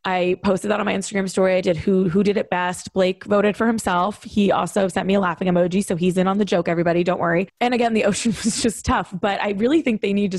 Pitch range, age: 200-280 Hz, 20-39